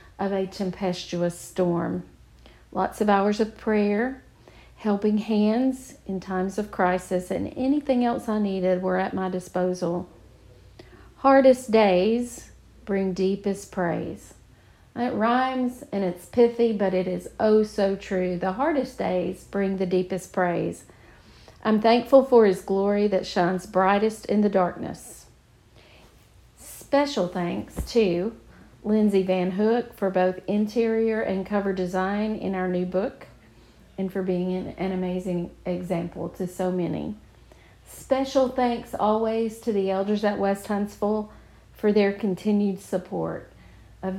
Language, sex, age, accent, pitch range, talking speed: English, female, 50-69, American, 180-215 Hz, 135 wpm